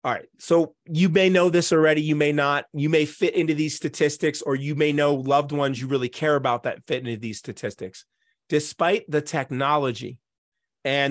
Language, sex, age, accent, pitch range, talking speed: English, male, 30-49, American, 130-155 Hz, 195 wpm